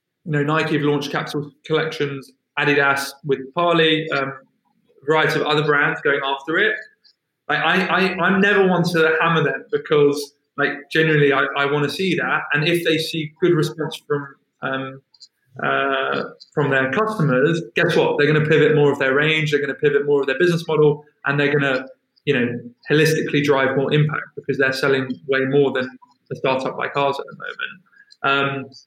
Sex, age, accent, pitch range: male, 20-39, British, 135-160 Hz